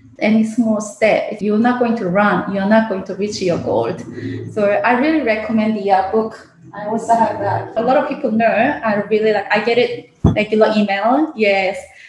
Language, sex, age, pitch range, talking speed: English, female, 20-39, 205-250 Hz, 205 wpm